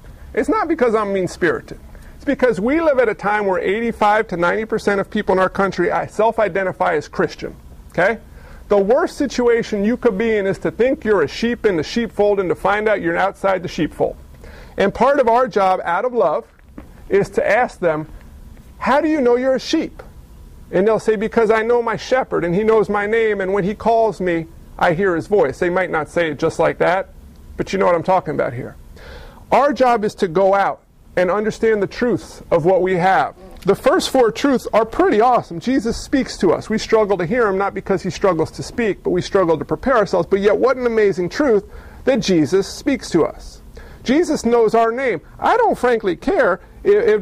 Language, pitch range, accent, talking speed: English, 195-245 Hz, American, 215 wpm